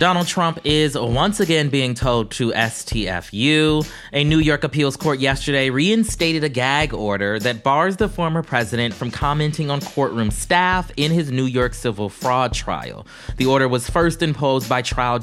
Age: 20-39